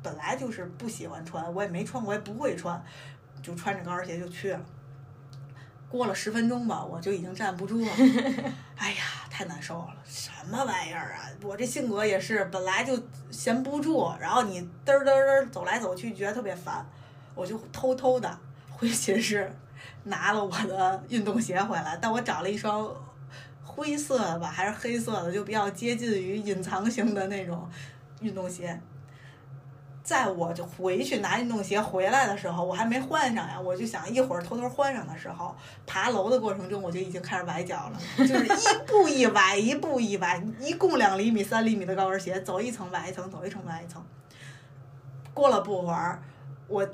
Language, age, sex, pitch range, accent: Chinese, 20-39, female, 165-220 Hz, native